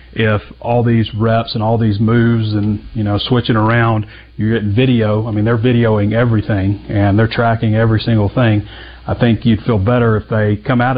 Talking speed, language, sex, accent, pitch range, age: 195 wpm, English, male, American, 100-120 Hz, 40-59